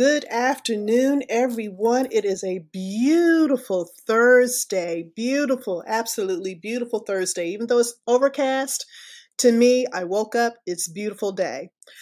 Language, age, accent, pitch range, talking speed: English, 30-49, American, 205-270 Hz, 125 wpm